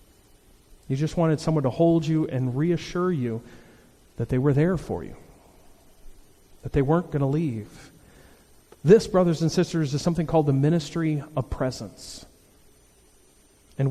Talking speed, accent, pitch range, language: 145 wpm, American, 130-170 Hz, English